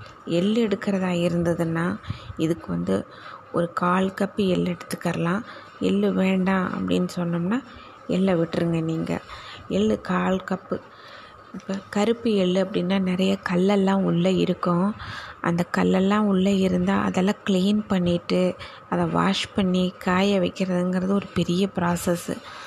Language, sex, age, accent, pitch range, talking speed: Tamil, female, 20-39, native, 175-195 Hz, 115 wpm